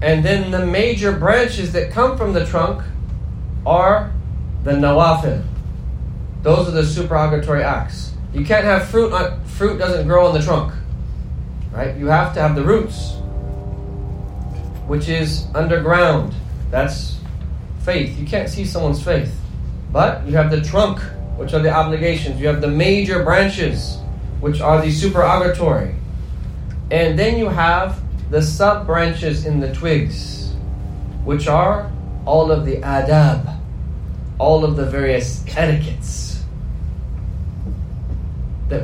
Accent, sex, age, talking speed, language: American, male, 30-49, 130 wpm, English